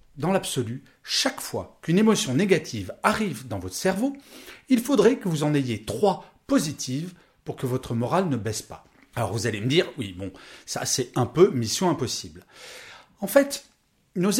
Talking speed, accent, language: 175 wpm, French, French